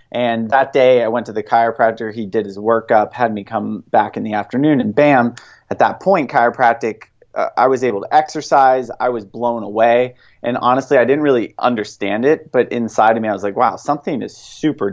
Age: 30-49